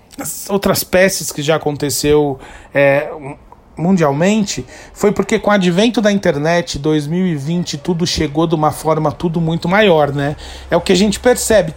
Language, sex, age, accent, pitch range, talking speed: Portuguese, male, 40-59, Brazilian, 160-210 Hz, 150 wpm